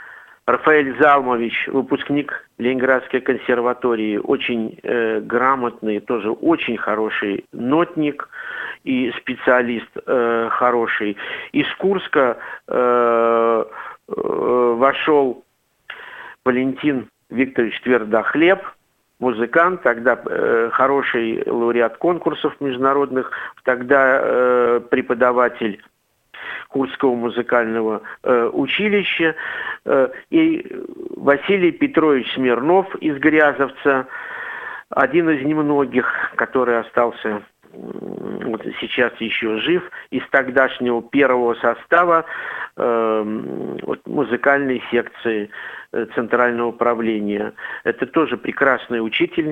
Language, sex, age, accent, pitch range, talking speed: Russian, male, 50-69, native, 120-150 Hz, 80 wpm